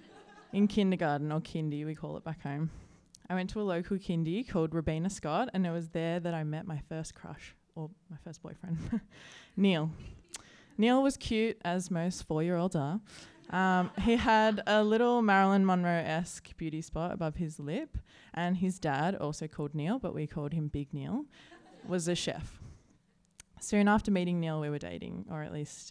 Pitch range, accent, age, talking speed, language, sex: 155-200 Hz, Australian, 20-39, 180 wpm, English, female